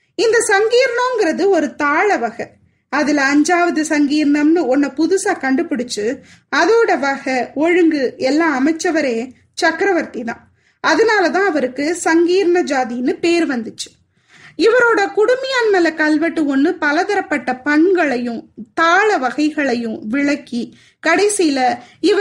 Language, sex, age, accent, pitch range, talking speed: Tamil, female, 20-39, native, 275-365 Hz, 90 wpm